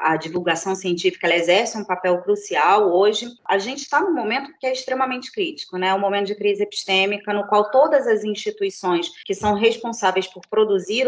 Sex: female